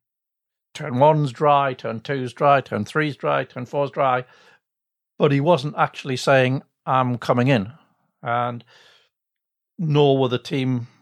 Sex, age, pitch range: male, 60-79, 125-150 Hz